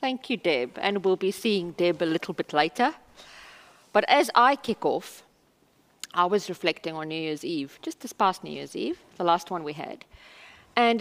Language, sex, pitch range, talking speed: English, female, 180-235 Hz, 195 wpm